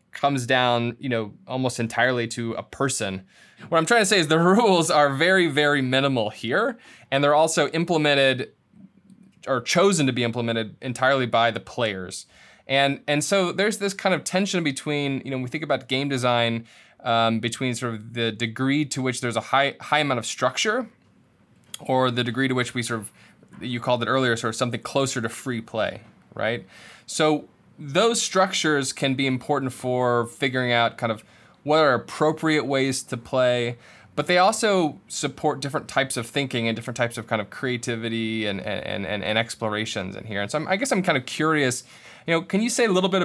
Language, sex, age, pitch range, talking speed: English, male, 20-39, 120-150 Hz, 200 wpm